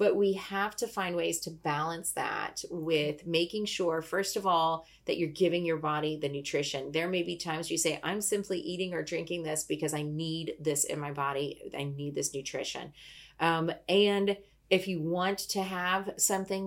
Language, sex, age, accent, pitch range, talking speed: English, female, 30-49, American, 160-195 Hz, 190 wpm